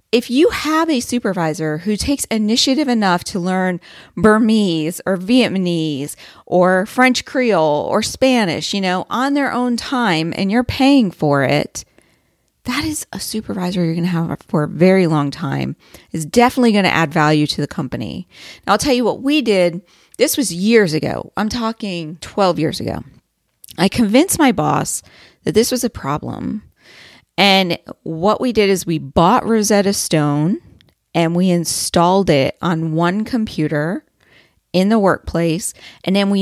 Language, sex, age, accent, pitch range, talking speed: English, female, 40-59, American, 165-225 Hz, 165 wpm